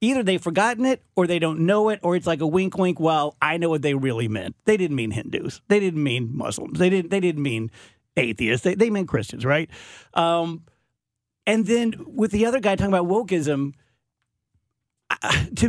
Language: English